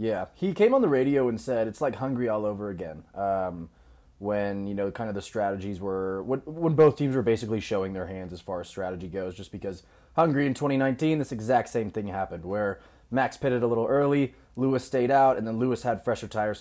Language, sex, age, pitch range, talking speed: English, male, 20-39, 100-125 Hz, 225 wpm